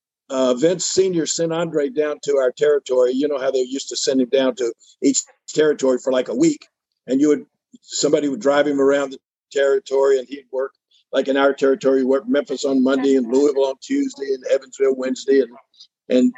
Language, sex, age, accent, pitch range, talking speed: English, male, 50-69, American, 135-170 Hz, 200 wpm